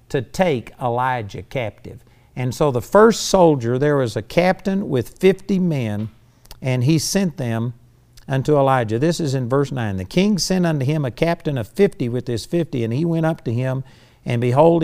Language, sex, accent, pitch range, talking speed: English, male, American, 115-155 Hz, 190 wpm